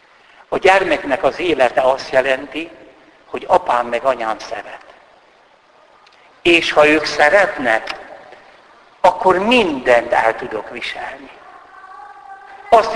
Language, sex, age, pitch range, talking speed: Hungarian, male, 60-79, 140-225 Hz, 95 wpm